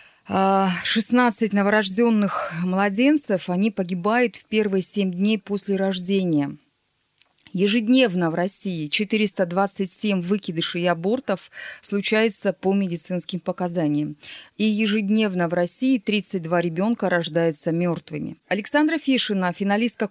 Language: Russian